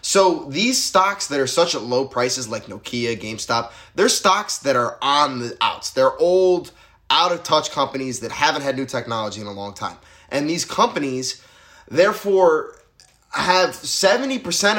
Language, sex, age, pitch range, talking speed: English, male, 20-39, 135-205 Hz, 165 wpm